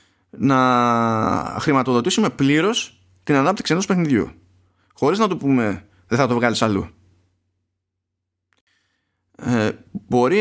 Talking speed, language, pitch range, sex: 100 wpm, Greek, 95-155 Hz, male